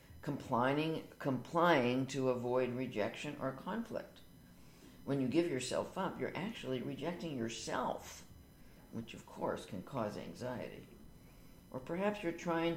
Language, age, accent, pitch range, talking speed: English, 60-79, American, 120-150 Hz, 115 wpm